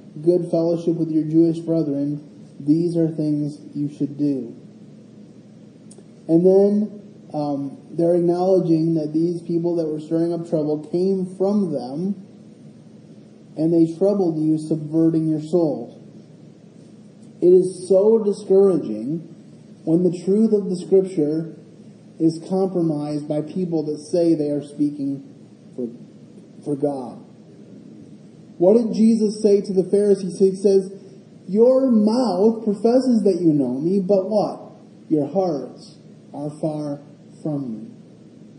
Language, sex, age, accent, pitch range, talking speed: English, male, 30-49, American, 155-195 Hz, 125 wpm